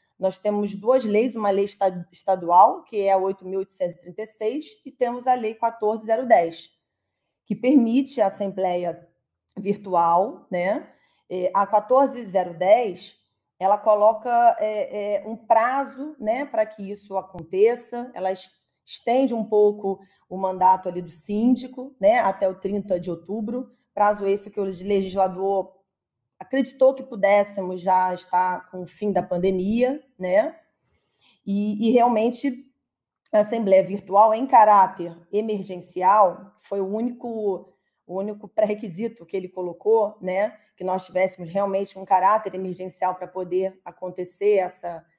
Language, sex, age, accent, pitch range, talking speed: Portuguese, female, 20-39, Brazilian, 185-235 Hz, 125 wpm